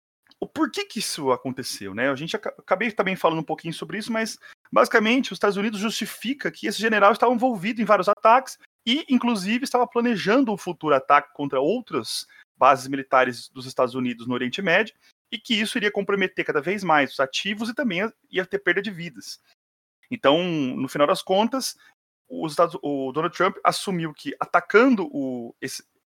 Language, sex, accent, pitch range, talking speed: English, male, Brazilian, 140-230 Hz, 175 wpm